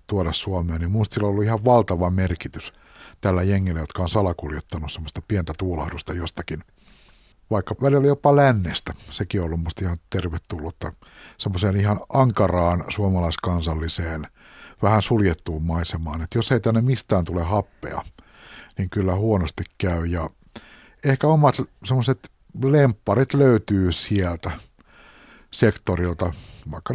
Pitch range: 90-115 Hz